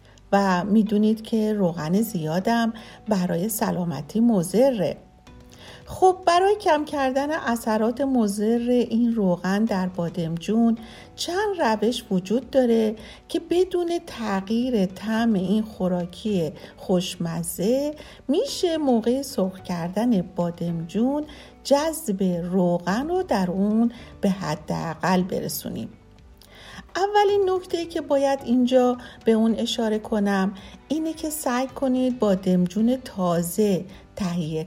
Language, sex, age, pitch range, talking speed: Persian, female, 50-69, 180-260 Hz, 100 wpm